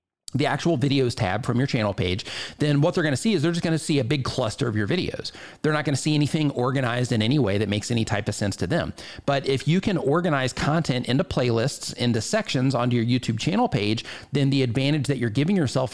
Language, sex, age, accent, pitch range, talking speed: English, male, 40-59, American, 115-145 Hz, 235 wpm